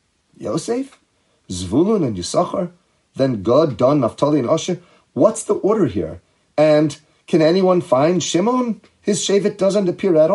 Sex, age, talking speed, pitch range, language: male, 40-59, 140 wpm, 120-170 Hz, English